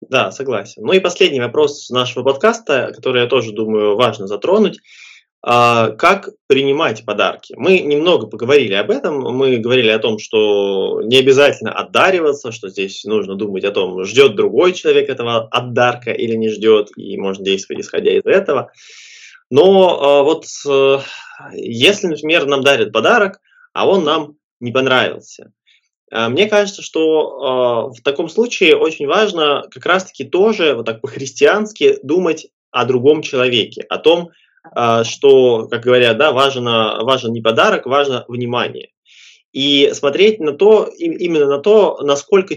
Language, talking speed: Russian, 140 wpm